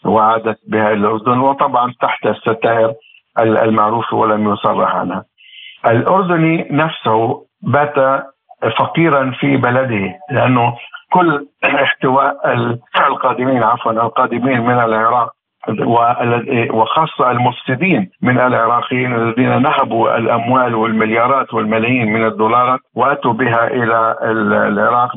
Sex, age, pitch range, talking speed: male, 60-79, 115-140 Hz, 95 wpm